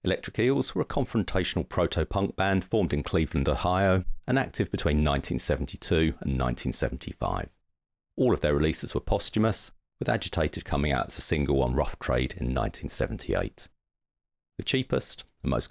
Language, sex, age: English, male, 40-59